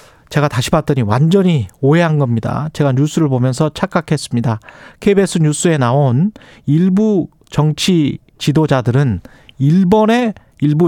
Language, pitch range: Korean, 135-175 Hz